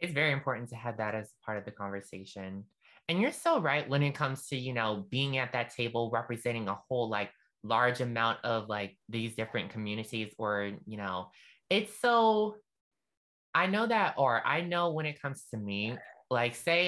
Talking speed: 190 wpm